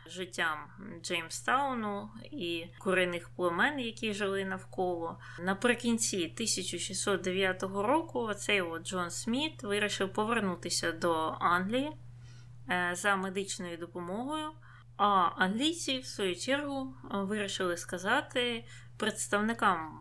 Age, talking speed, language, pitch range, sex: 20-39, 85 wpm, Ukrainian, 160-205 Hz, female